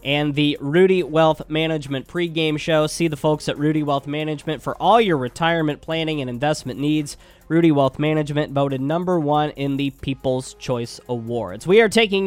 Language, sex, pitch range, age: English, male, 145-175 Hz, 20-39